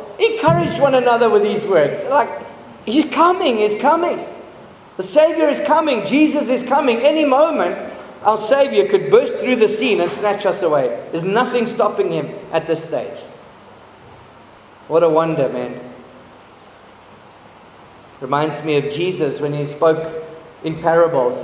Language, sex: English, male